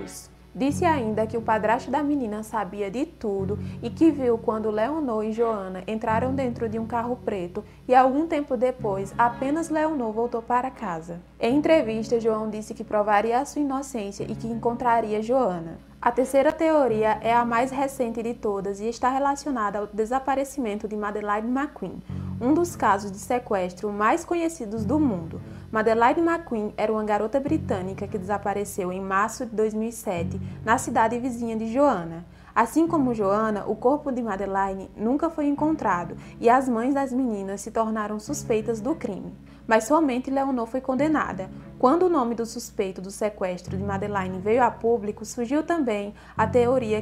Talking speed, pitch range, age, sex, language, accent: 165 wpm, 215-265 Hz, 20-39, female, Portuguese, Brazilian